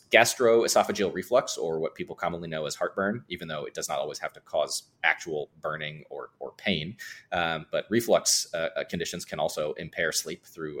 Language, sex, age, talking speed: English, male, 30-49, 185 wpm